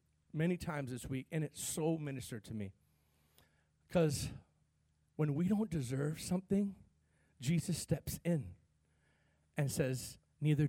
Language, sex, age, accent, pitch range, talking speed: English, male, 40-59, American, 125-180 Hz, 125 wpm